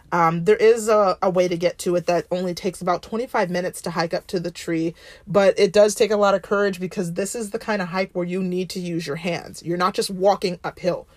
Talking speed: 265 wpm